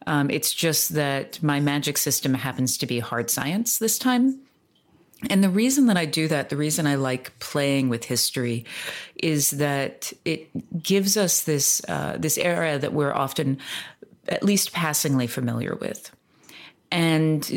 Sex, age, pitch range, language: female, 40-59, 140-185 Hz, English